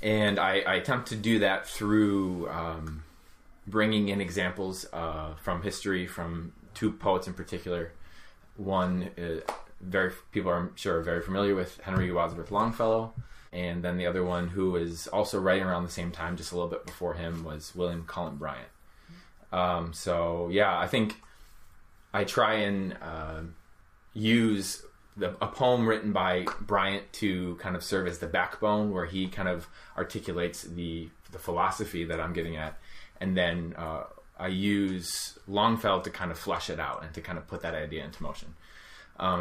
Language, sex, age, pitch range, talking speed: English, male, 20-39, 85-100 Hz, 175 wpm